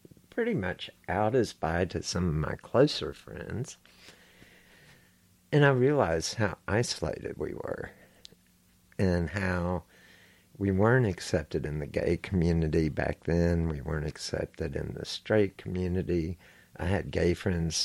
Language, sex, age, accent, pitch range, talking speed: English, male, 60-79, American, 85-110 Hz, 135 wpm